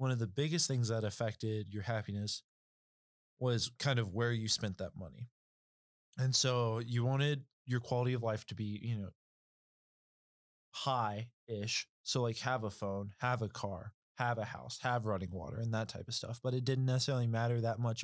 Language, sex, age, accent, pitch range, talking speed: English, male, 20-39, American, 105-125 Hz, 185 wpm